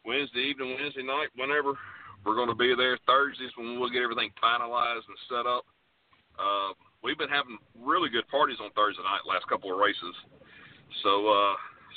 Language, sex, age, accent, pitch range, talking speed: English, male, 40-59, American, 105-130 Hz, 175 wpm